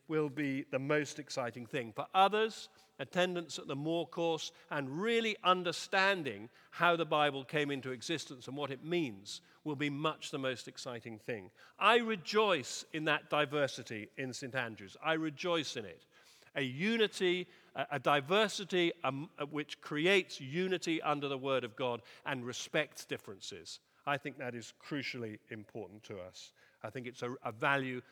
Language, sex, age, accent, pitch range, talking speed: English, male, 50-69, British, 125-160 Hz, 160 wpm